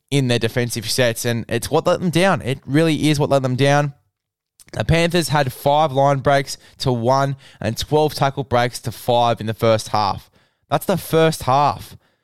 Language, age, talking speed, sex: English, 10-29, 190 wpm, male